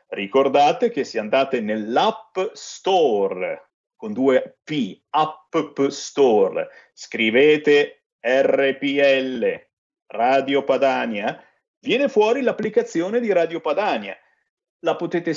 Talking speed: 90 wpm